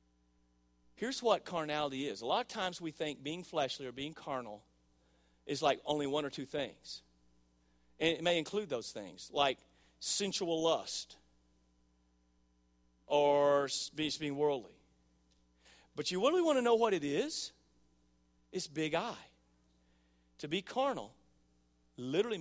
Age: 40-59